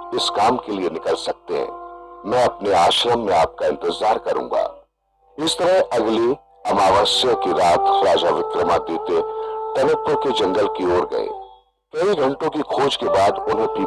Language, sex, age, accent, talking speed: Hindi, male, 50-69, native, 80 wpm